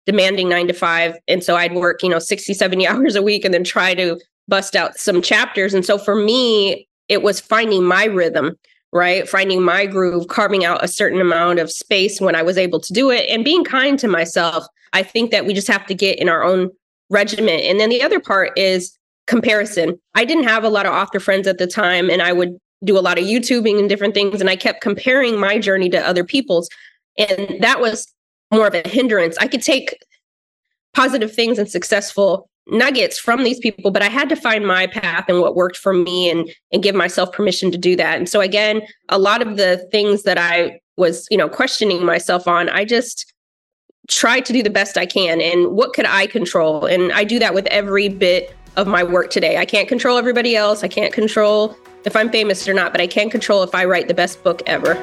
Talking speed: 225 wpm